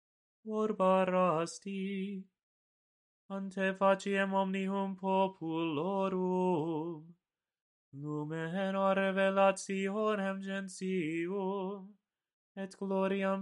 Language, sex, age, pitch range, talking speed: English, male, 30-49, 165-195 Hz, 45 wpm